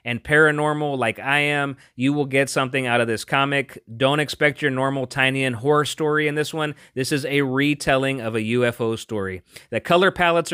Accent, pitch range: American, 125-170 Hz